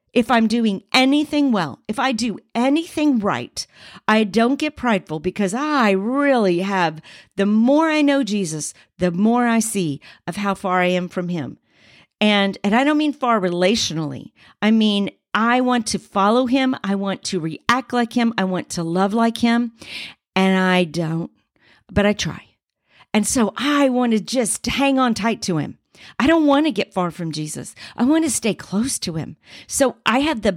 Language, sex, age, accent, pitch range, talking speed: English, female, 50-69, American, 175-245 Hz, 190 wpm